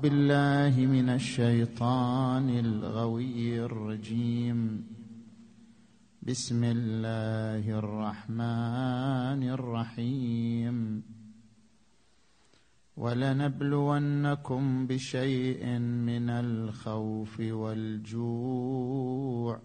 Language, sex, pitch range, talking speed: Arabic, male, 110-130 Hz, 45 wpm